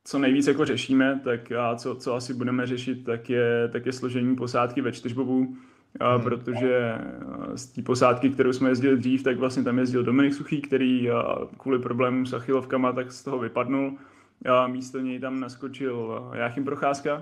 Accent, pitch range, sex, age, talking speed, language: native, 125-135 Hz, male, 20-39, 165 wpm, Czech